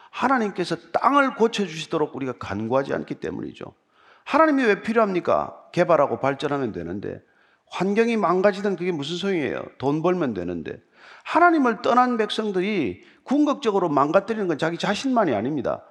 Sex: male